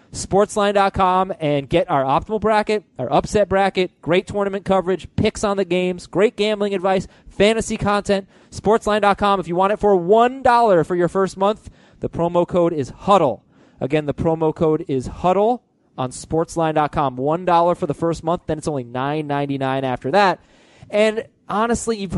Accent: American